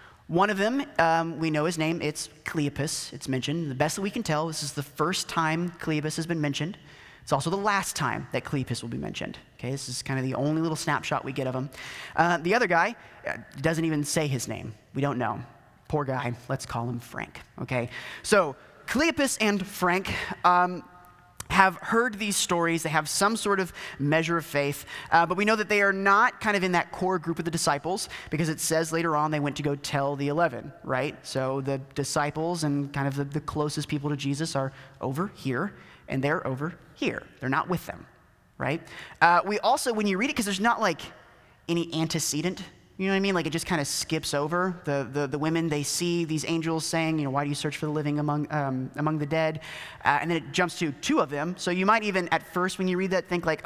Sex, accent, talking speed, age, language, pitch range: male, American, 235 wpm, 30-49, English, 145-180 Hz